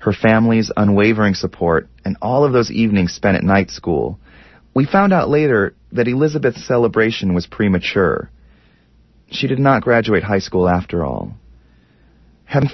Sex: male